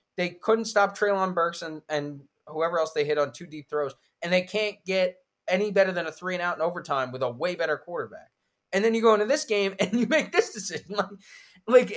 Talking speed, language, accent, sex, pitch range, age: 235 wpm, English, American, male, 125-205 Hz, 20-39